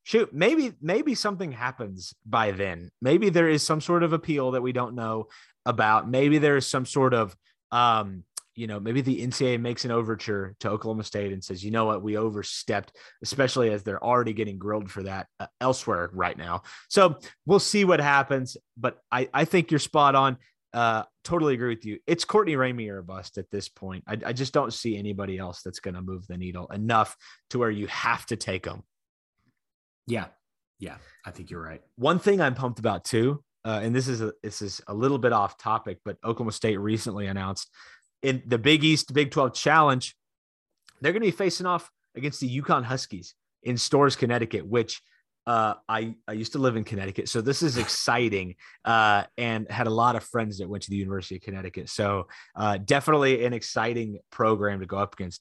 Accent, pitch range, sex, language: American, 100-135 Hz, male, English